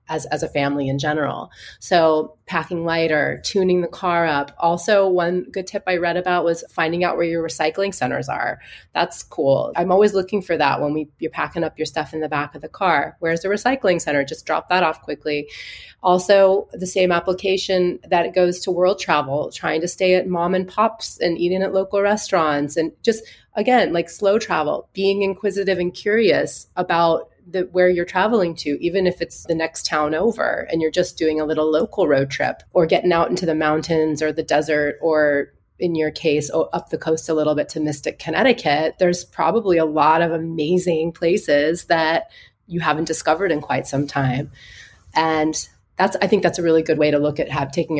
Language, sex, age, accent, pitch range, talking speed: English, female, 30-49, American, 155-190 Hz, 205 wpm